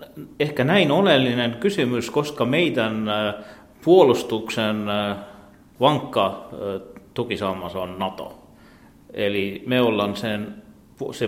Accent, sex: native, male